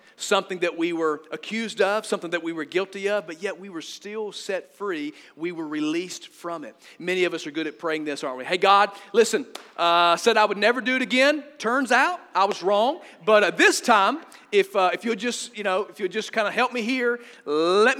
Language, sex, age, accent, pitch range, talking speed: English, male, 40-59, American, 175-245 Hz, 235 wpm